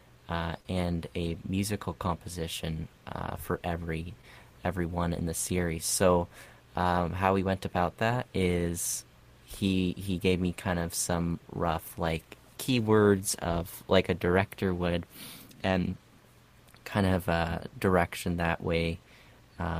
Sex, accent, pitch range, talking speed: male, American, 85-100 Hz, 130 wpm